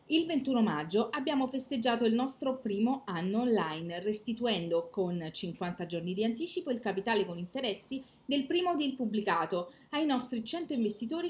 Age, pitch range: 30-49, 185-250 Hz